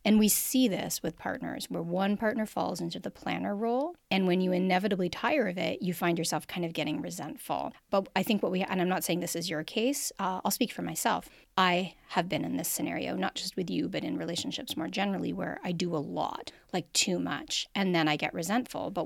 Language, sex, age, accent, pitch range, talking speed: English, female, 30-49, American, 175-235 Hz, 230 wpm